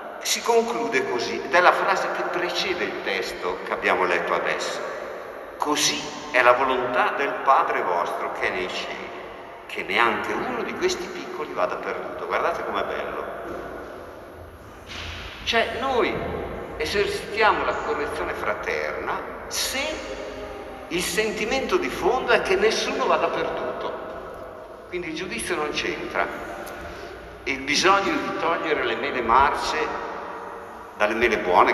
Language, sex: Italian, male